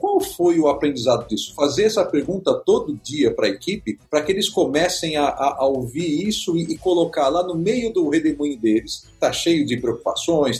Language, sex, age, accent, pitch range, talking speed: Portuguese, male, 50-69, Brazilian, 130-210 Hz, 200 wpm